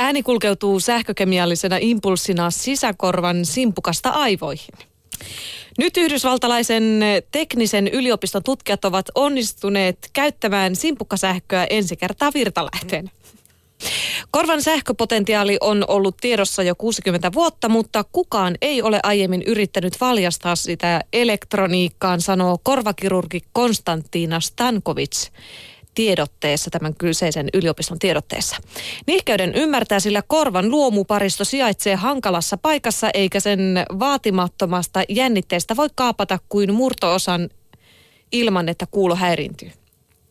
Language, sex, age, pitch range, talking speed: Finnish, female, 30-49, 180-235 Hz, 95 wpm